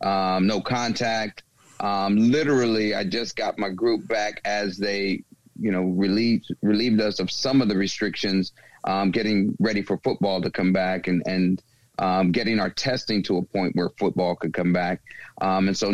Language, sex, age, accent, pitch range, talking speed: English, male, 40-59, American, 95-110 Hz, 180 wpm